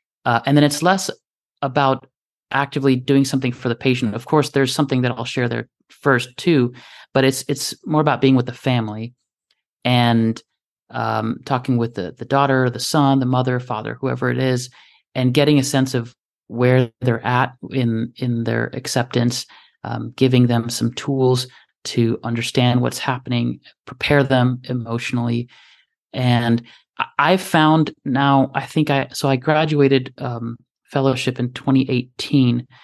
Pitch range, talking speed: 125-140 Hz, 155 wpm